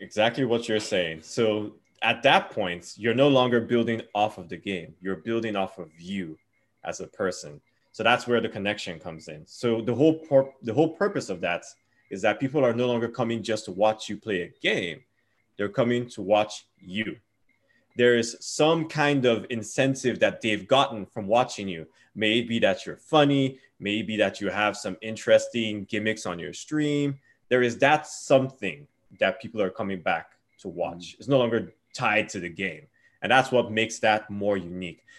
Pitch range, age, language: 100-120 Hz, 20-39, English